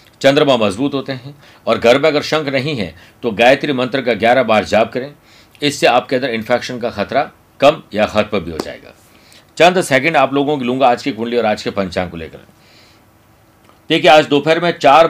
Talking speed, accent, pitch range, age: 205 wpm, native, 115-145 Hz, 50-69